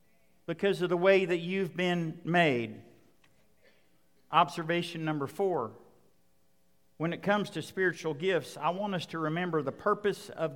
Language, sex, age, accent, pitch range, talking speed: English, male, 50-69, American, 160-210 Hz, 140 wpm